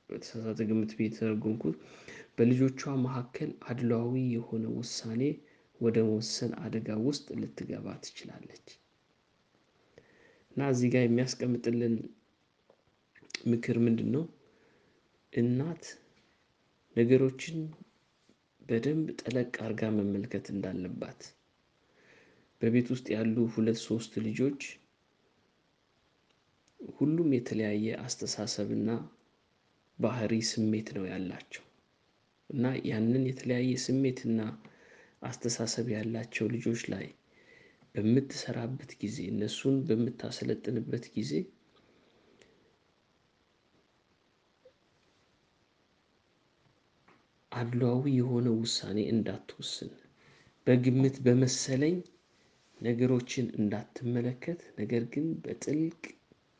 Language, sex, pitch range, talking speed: Amharic, male, 110-130 Hz, 70 wpm